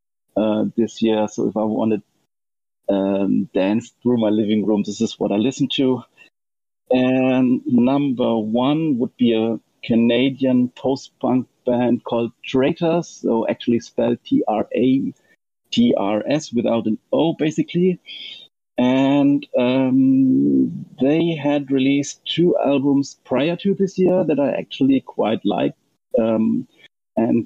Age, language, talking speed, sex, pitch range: 50-69, English, 125 wpm, male, 110-140 Hz